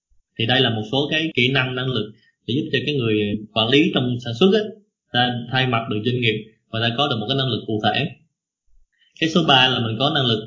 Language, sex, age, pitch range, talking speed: Vietnamese, male, 20-39, 110-140 Hz, 250 wpm